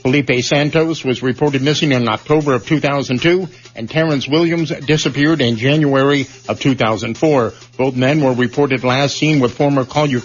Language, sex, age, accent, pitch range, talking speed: English, male, 50-69, American, 125-150 Hz, 150 wpm